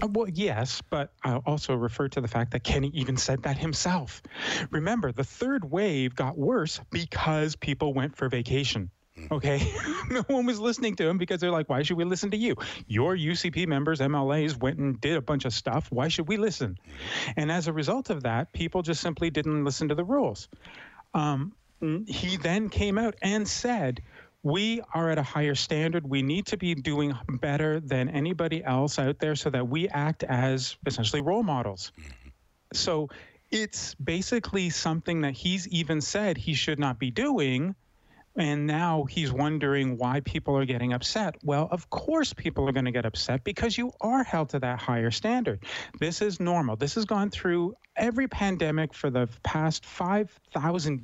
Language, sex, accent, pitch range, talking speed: English, male, American, 135-180 Hz, 180 wpm